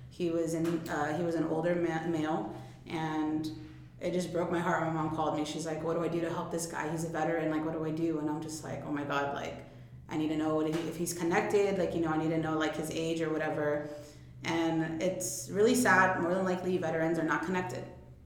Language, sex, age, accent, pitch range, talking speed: English, female, 30-49, American, 155-170 Hz, 260 wpm